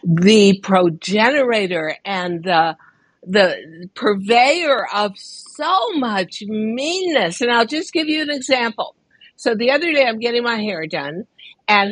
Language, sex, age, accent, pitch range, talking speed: English, female, 60-79, American, 200-320 Hz, 135 wpm